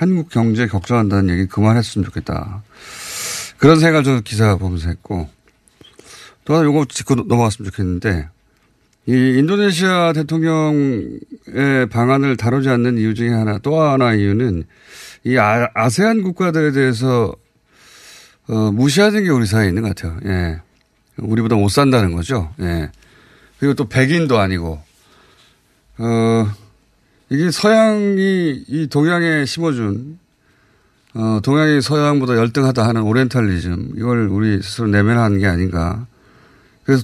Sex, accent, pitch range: male, native, 105-145 Hz